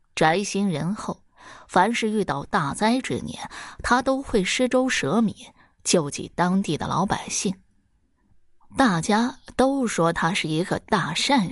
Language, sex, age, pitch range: Chinese, female, 20-39, 165-225 Hz